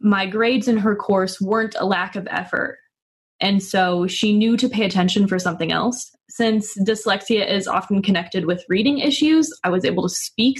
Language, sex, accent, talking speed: English, female, American, 185 wpm